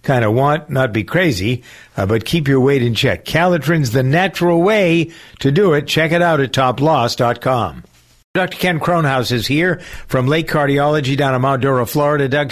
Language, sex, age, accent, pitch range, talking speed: English, male, 60-79, American, 120-160 Hz, 185 wpm